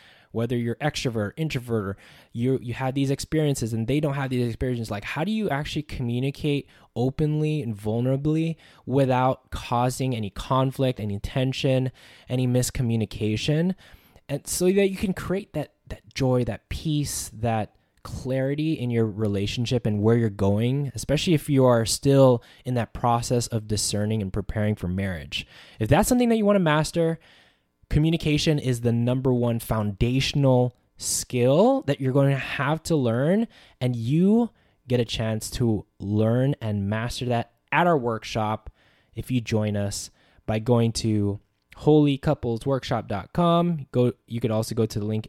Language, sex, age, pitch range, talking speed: English, male, 10-29, 110-145 Hz, 155 wpm